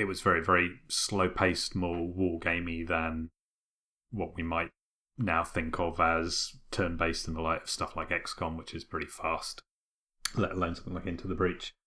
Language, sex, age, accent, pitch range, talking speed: English, male, 30-49, British, 85-100 Hz, 170 wpm